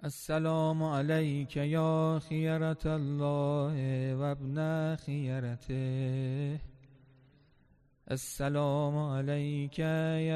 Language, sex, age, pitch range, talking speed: Persian, male, 40-59, 140-165 Hz, 60 wpm